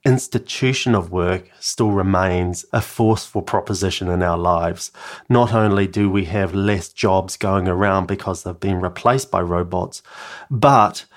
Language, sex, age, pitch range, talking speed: English, male, 30-49, 95-120 Hz, 145 wpm